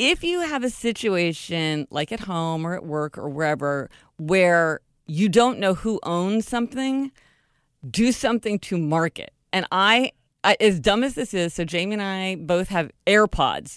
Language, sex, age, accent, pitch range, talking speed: English, female, 40-59, American, 150-200 Hz, 170 wpm